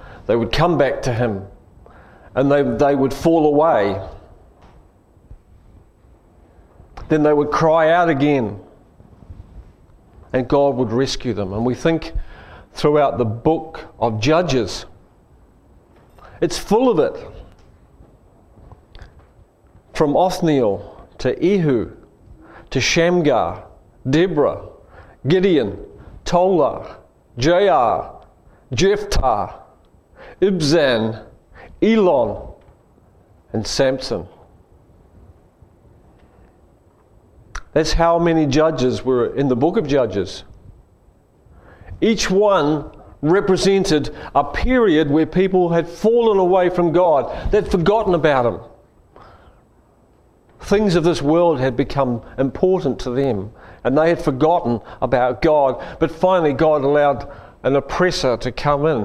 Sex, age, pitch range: male, 40-59, 110-165 Hz